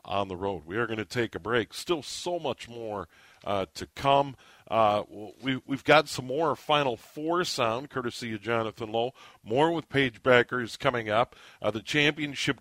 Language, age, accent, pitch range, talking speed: English, 50-69, American, 120-155 Hz, 185 wpm